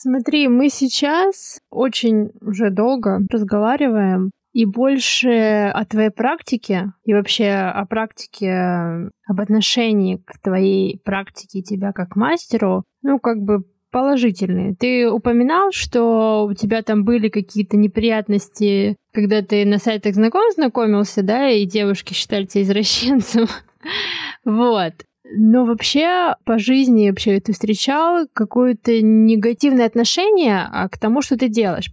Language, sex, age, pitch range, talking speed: Russian, female, 20-39, 200-245 Hz, 120 wpm